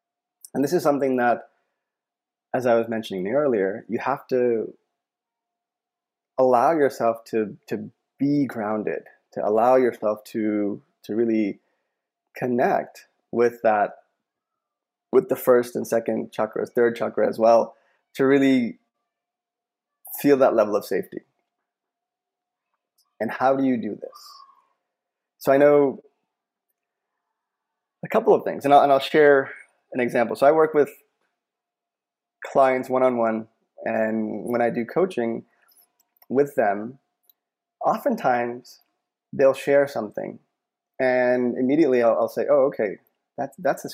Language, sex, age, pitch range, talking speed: English, male, 20-39, 115-140 Hz, 125 wpm